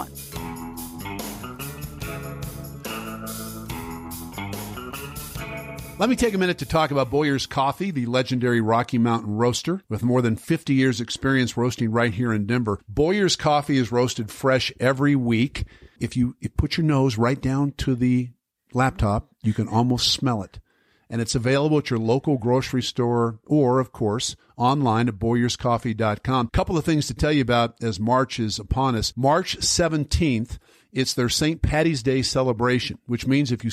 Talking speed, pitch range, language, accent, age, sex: 155 wpm, 115-135 Hz, English, American, 50-69, male